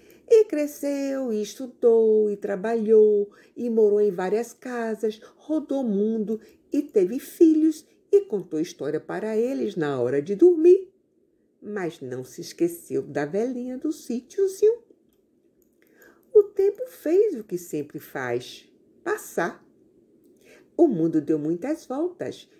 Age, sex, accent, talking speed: 50-69, female, Brazilian, 125 wpm